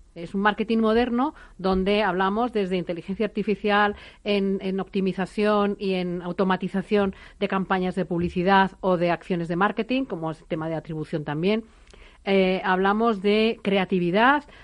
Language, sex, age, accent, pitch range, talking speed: Spanish, female, 40-59, Spanish, 170-205 Hz, 145 wpm